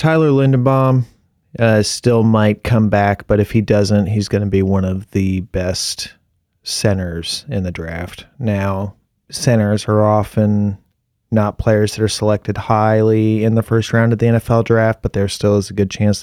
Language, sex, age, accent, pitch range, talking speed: English, male, 30-49, American, 95-115 Hz, 180 wpm